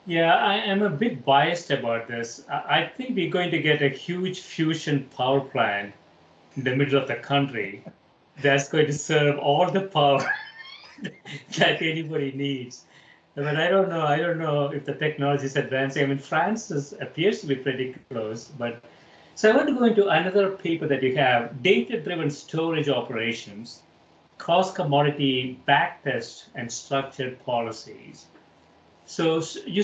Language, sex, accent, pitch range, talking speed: English, male, Indian, 125-155 Hz, 165 wpm